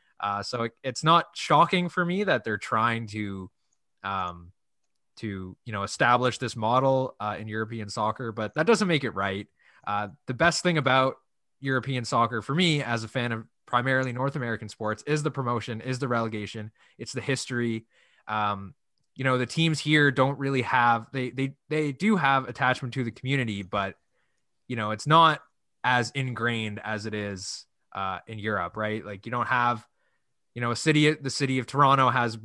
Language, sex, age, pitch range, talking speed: English, male, 20-39, 110-135 Hz, 185 wpm